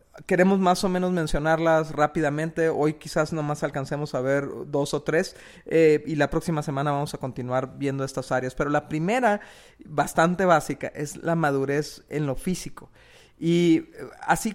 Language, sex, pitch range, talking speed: Spanish, male, 145-170 Hz, 160 wpm